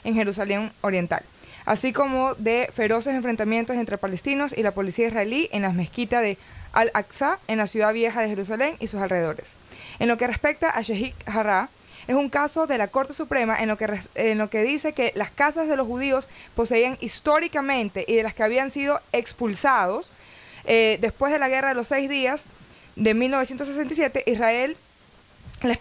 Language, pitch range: Spanish, 215-275 Hz